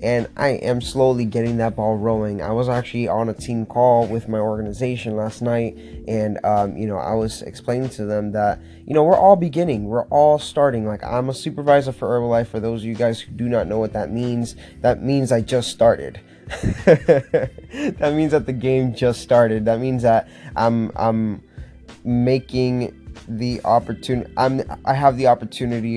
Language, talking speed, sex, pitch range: English, 185 wpm, male, 110-125 Hz